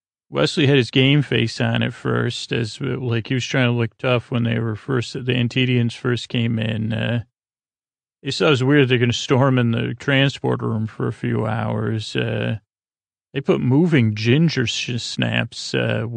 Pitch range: 115-130 Hz